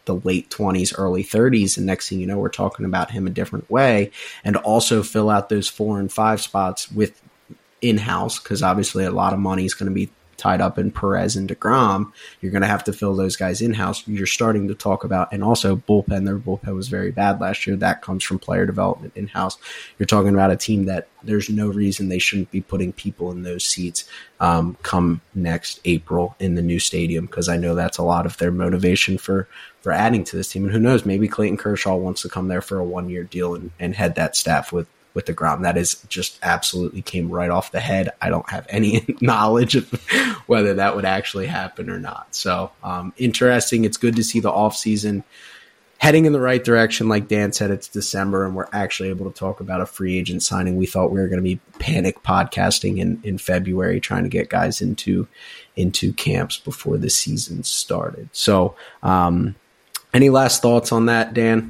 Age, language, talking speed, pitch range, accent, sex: 20-39, English, 220 wpm, 90-105 Hz, American, male